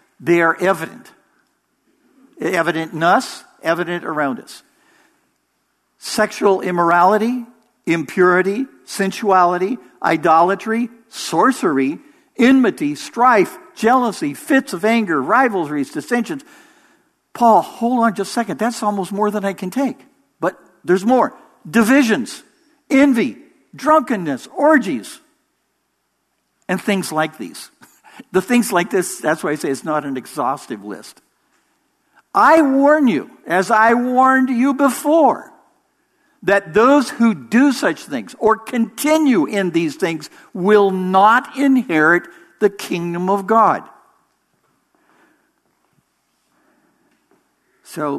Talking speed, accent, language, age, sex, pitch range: 110 wpm, American, English, 60-79, male, 175-285 Hz